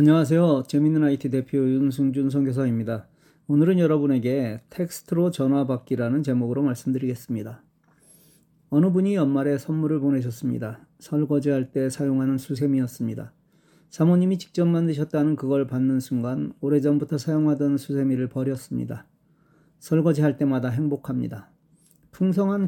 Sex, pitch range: male, 135-160 Hz